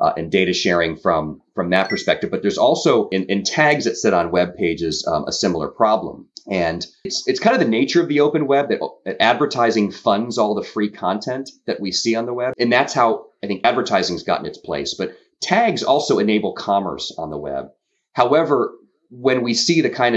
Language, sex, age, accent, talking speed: English, male, 30-49, American, 210 wpm